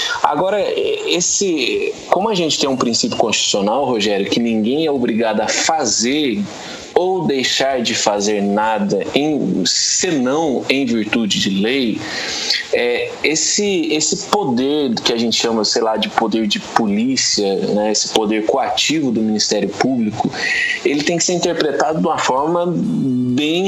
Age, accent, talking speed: 20-39, Brazilian, 135 wpm